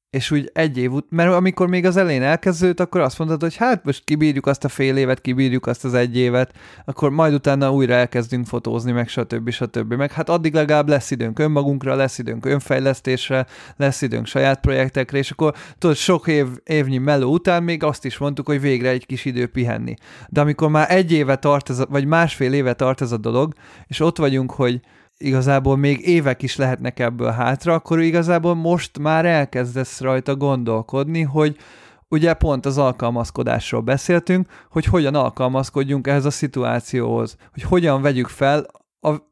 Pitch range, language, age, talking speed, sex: 130-155 Hz, Hungarian, 30-49, 180 wpm, male